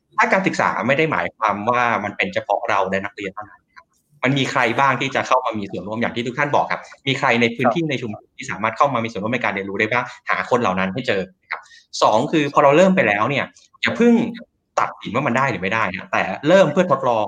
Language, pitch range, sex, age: Thai, 105-150 Hz, male, 20-39